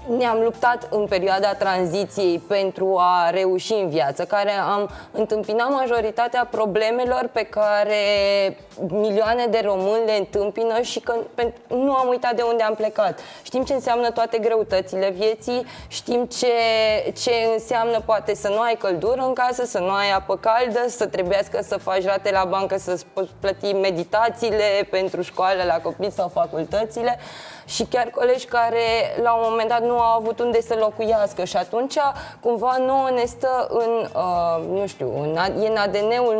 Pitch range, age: 195-235 Hz, 20-39